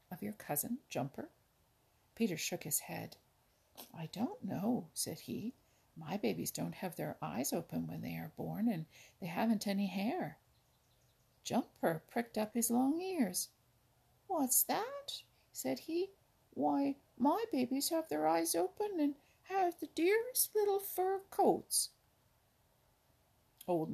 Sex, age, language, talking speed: female, 60-79, English, 135 wpm